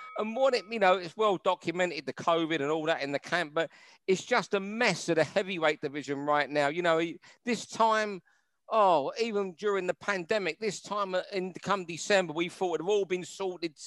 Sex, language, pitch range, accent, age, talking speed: male, English, 165-205 Hz, British, 50-69, 210 wpm